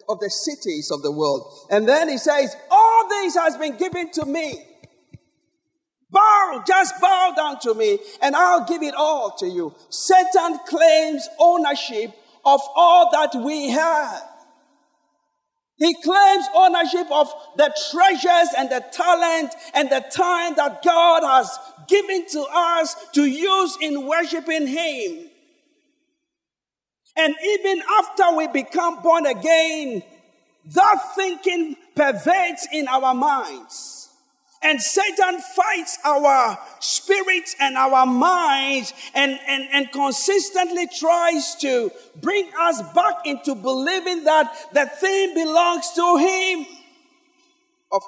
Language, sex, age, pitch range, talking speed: English, male, 50-69, 280-355 Hz, 125 wpm